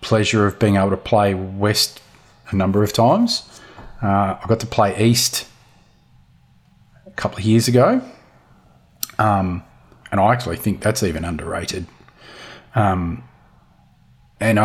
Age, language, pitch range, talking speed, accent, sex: 30-49, English, 100-120 Hz, 130 wpm, Australian, male